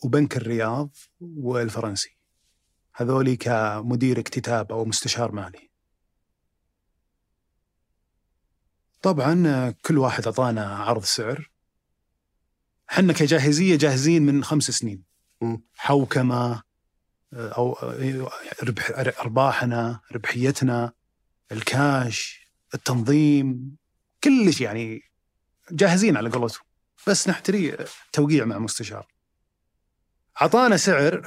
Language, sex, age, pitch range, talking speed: Arabic, male, 30-49, 100-140 Hz, 75 wpm